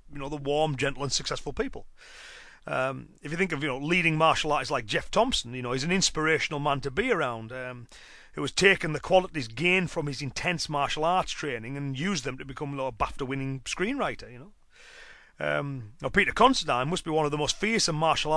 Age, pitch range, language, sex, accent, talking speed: 30-49, 135-175 Hz, English, male, British, 220 wpm